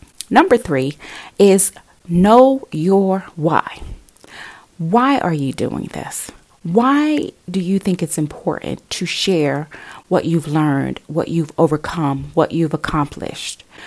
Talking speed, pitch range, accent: 120 wpm, 155-190 Hz, American